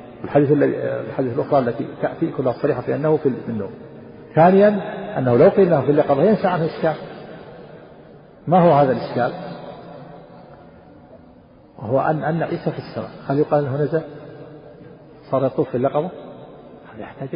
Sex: male